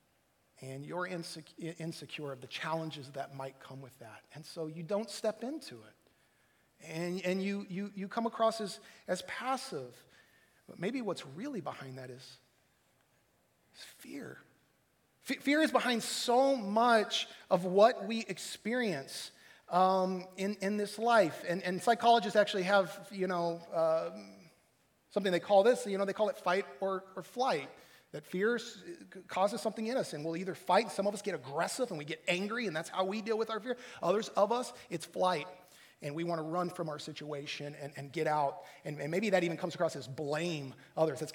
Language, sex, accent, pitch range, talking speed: English, male, American, 150-200 Hz, 185 wpm